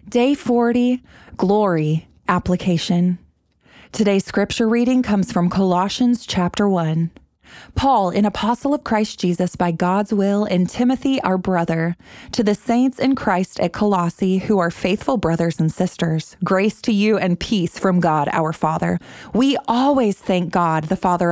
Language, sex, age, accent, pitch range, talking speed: English, female, 20-39, American, 170-215 Hz, 150 wpm